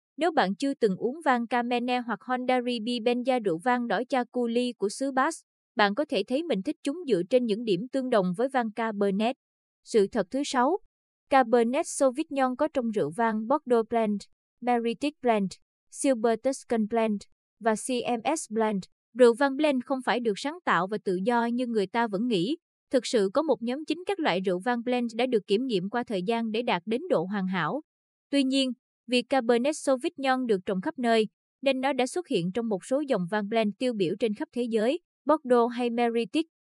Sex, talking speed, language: female, 200 wpm, Vietnamese